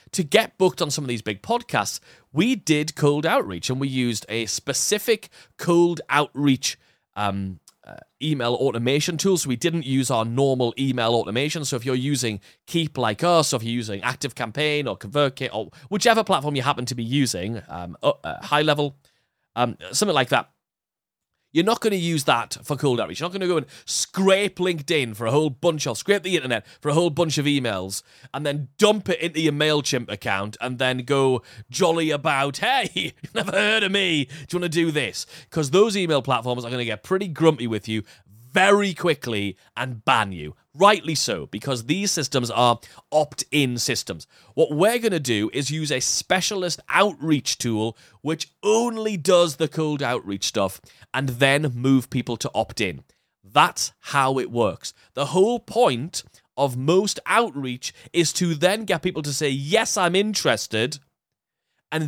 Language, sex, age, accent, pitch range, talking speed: English, male, 30-49, British, 125-175 Hz, 185 wpm